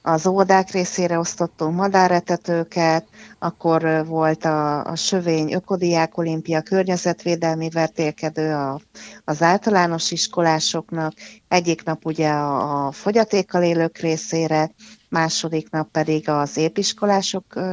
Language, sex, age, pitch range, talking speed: Hungarian, female, 30-49, 155-185 Hz, 100 wpm